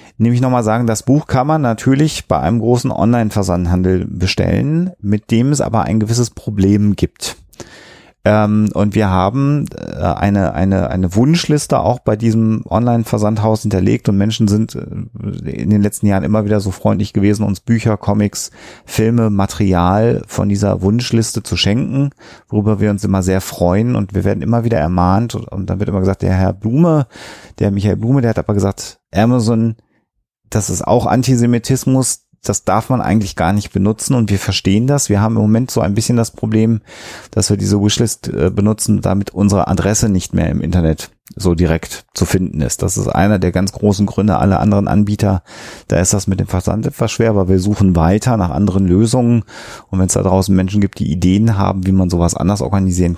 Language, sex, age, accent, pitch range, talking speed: German, male, 40-59, German, 95-115 Hz, 185 wpm